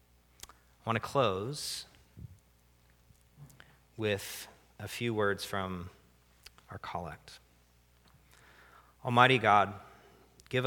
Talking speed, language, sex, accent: 75 wpm, English, male, American